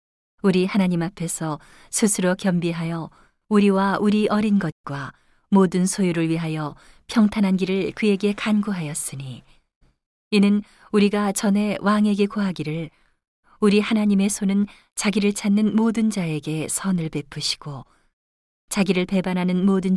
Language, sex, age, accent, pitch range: Korean, female, 40-59, native, 160-205 Hz